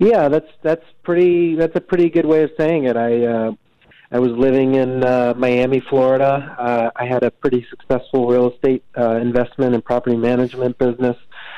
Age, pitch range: 40-59, 115-135 Hz